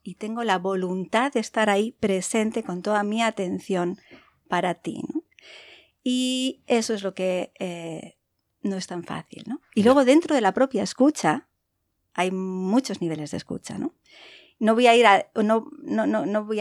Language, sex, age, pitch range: Spanish, female, 50-69, 180-220 Hz